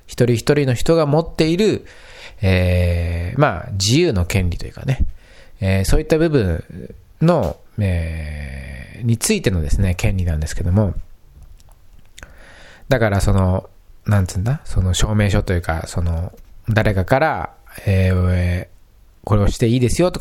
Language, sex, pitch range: Japanese, male, 85-115 Hz